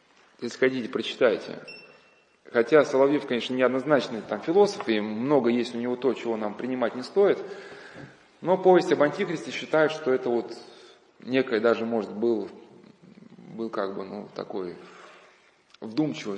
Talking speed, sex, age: 140 wpm, male, 20-39